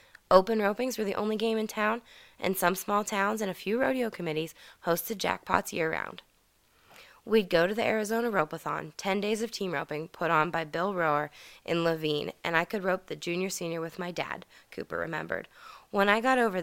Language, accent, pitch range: English, American, 165-210 Hz